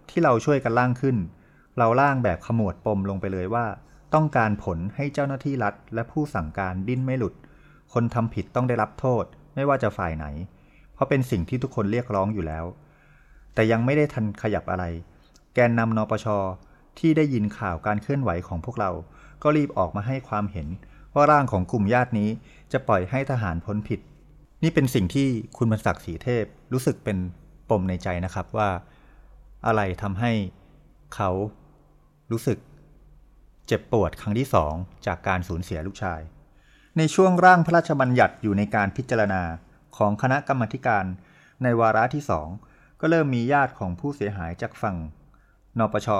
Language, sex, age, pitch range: Thai, male, 30-49, 95-135 Hz